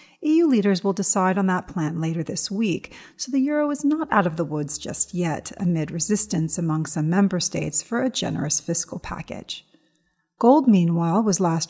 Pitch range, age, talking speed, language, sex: 160-210 Hz, 40-59, 185 wpm, English, female